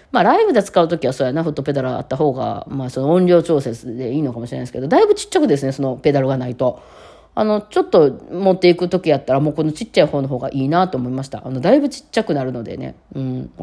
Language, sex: Japanese, female